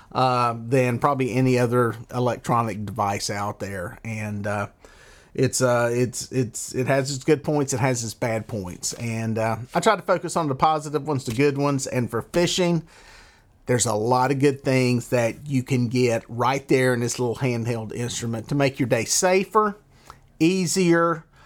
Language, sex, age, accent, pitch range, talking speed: English, male, 40-59, American, 120-150 Hz, 180 wpm